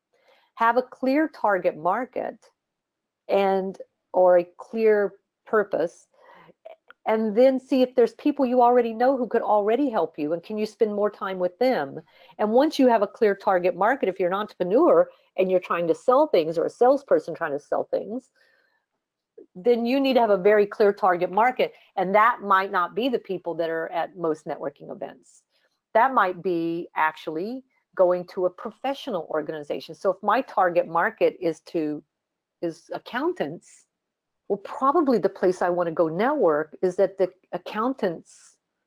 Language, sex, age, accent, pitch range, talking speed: English, female, 50-69, American, 175-245 Hz, 170 wpm